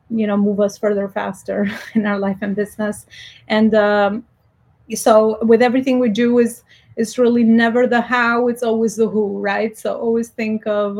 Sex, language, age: female, English, 30-49